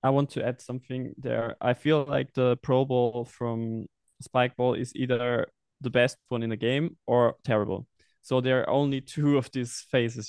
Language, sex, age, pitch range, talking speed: English, male, 20-39, 115-135 Hz, 185 wpm